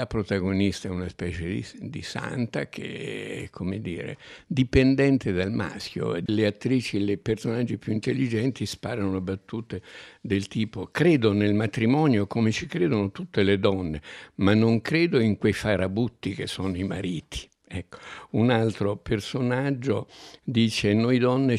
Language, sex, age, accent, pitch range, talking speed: Italian, male, 60-79, native, 100-125 Hz, 145 wpm